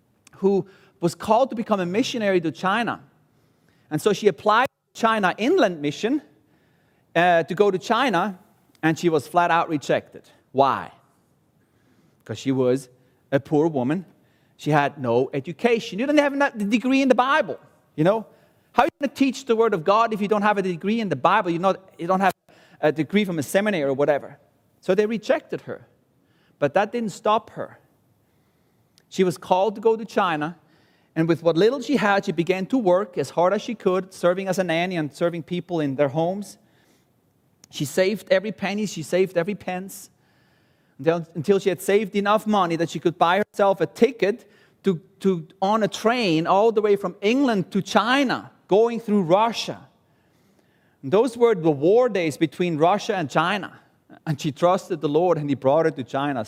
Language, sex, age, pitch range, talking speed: English, male, 30-49, 160-210 Hz, 190 wpm